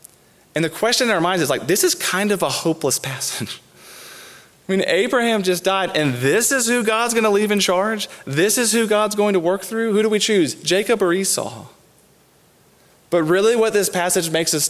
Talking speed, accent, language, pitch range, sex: 210 wpm, American, English, 145-180 Hz, male